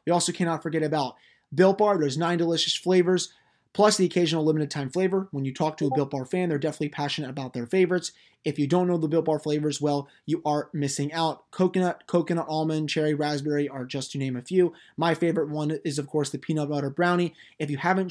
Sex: male